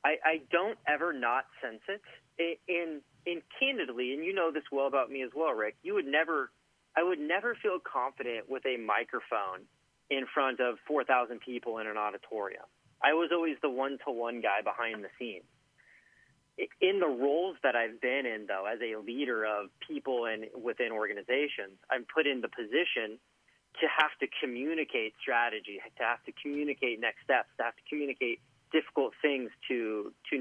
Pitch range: 120-155 Hz